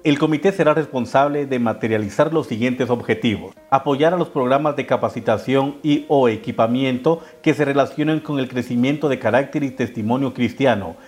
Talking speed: 155 wpm